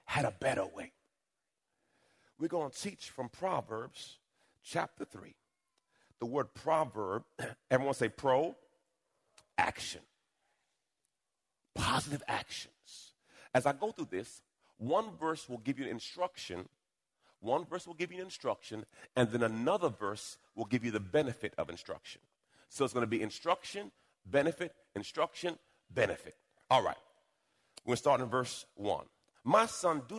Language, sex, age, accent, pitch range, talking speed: English, male, 40-59, American, 115-165 Hz, 135 wpm